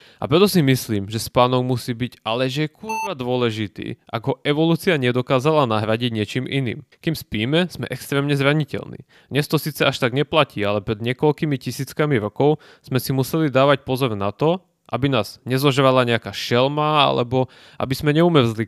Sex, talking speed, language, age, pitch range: male, 165 wpm, Czech, 20-39, 115-150 Hz